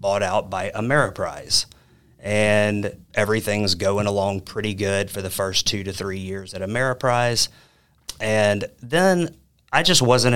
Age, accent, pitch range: 30-49, American, 95-110 Hz